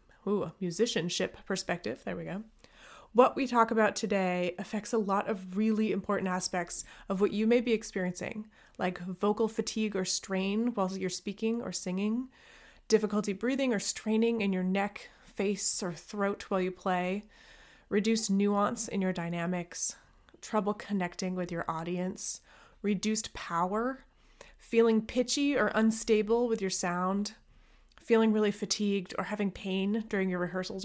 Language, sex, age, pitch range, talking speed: English, female, 20-39, 185-225 Hz, 150 wpm